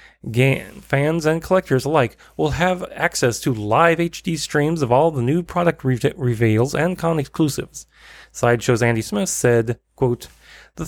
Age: 30-49